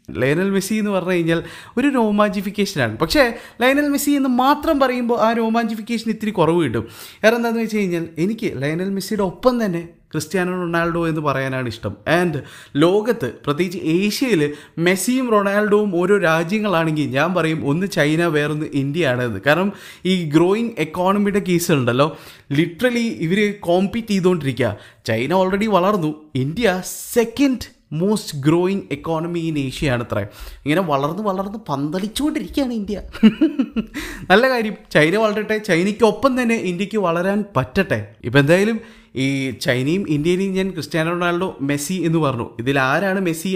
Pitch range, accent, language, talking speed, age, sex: 155-215 Hz, native, Malayalam, 135 wpm, 20-39, male